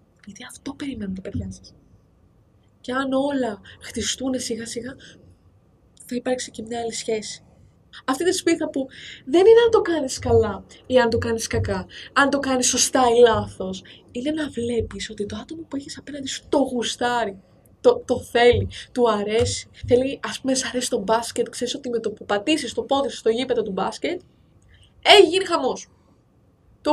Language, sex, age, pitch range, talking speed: Greek, female, 20-39, 205-275 Hz, 175 wpm